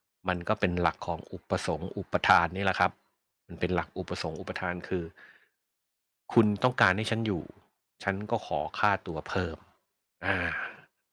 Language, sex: Thai, male